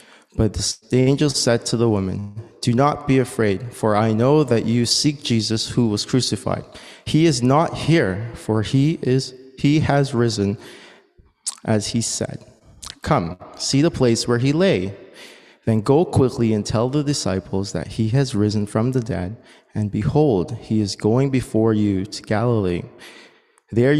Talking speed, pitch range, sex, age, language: 160 wpm, 105-130 Hz, male, 30-49, English